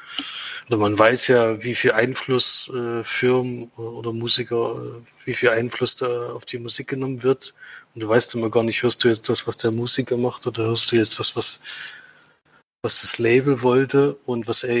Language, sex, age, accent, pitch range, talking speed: German, male, 20-39, German, 110-125 Hz, 190 wpm